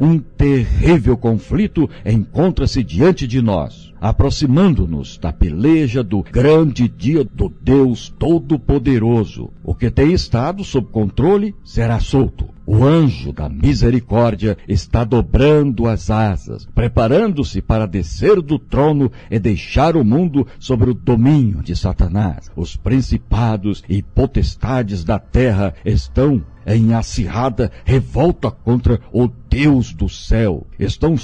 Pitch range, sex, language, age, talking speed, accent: 95-130 Hz, male, Portuguese, 60-79, 120 wpm, Brazilian